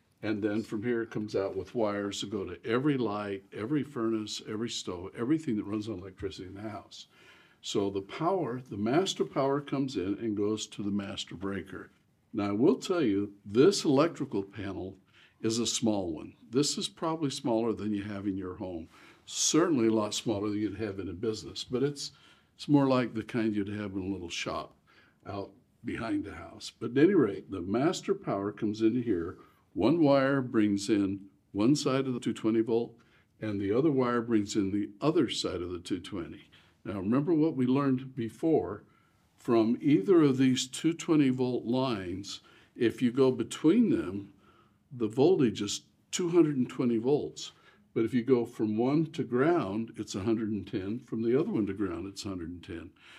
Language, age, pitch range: English, 60-79, 100-130 Hz